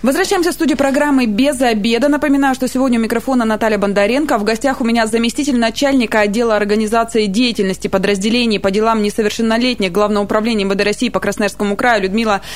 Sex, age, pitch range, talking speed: female, 20-39, 210-260 Hz, 165 wpm